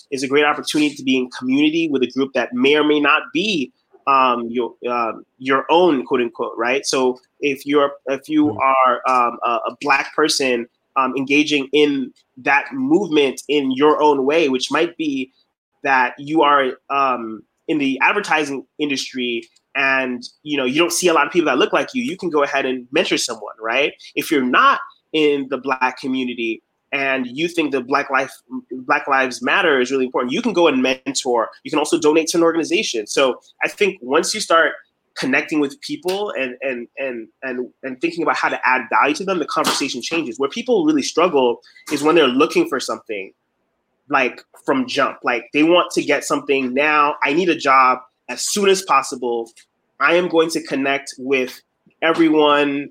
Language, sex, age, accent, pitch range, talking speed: English, male, 20-39, American, 130-165 Hz, 190 wpm